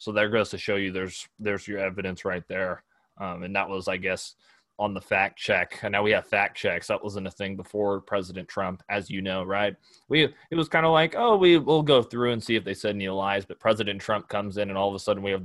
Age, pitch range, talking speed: 20-39, 95-110 Hz, 265 wpm